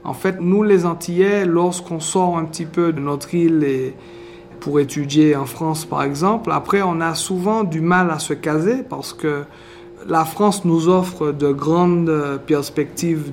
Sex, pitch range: male, 145-180 Hz